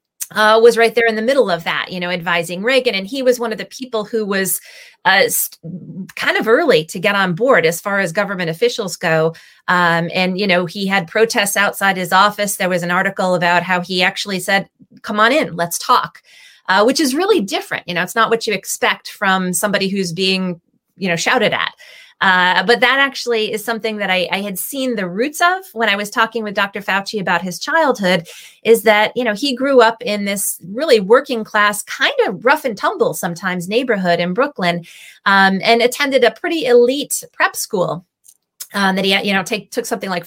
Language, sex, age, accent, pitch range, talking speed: English, female, 30-49, American, 180-240 Hz, 210 wpm